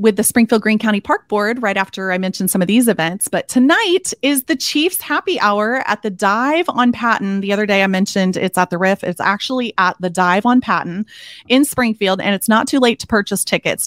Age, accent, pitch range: 30-49, American, 190-270 Hz